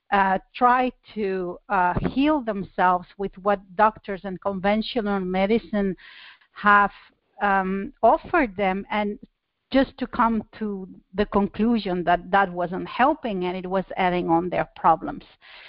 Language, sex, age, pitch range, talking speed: English, female, 40-59, 190-225 Hz, 130 wpm